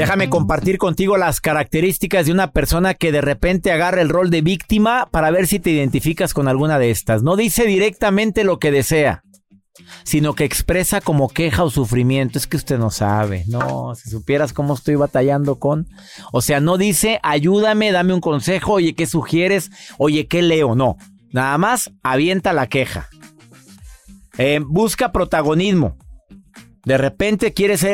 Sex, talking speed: male, 165 wpm